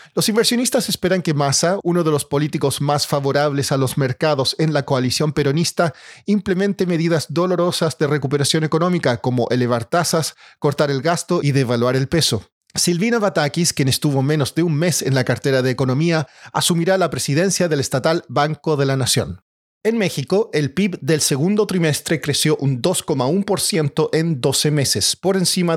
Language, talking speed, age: Spanish, 165 wpm, 40-59